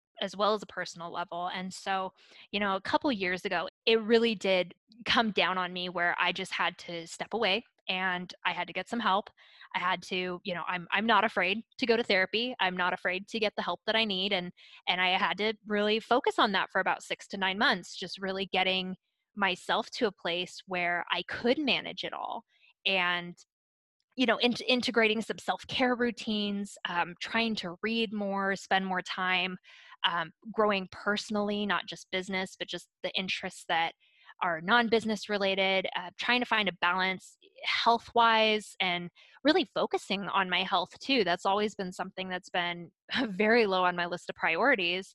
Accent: American